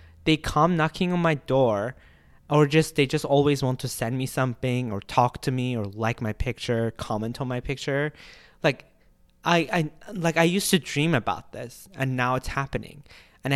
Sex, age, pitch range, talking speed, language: male, 20-39, 105-145 Hz, 190 wpm, English